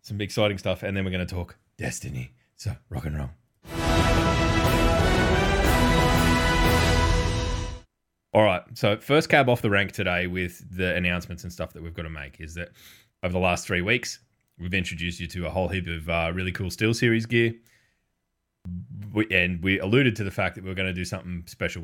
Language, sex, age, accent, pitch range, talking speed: English, male, 20-39, Australian, 85-110 Hz, 190 wpm